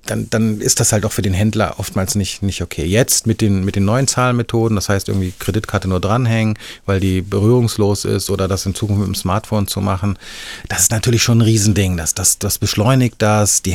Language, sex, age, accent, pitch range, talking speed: German, male, 30-49, German, 95-110 Hz, 225 wpm